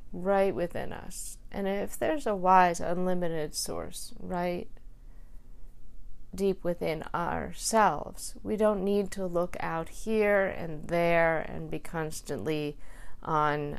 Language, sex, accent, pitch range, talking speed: English, female, American, 155-180 Hz, 120 wpm